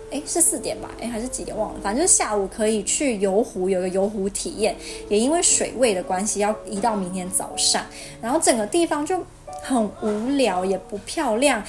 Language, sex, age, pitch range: Chinese, female, 20-39, 190-250 Hz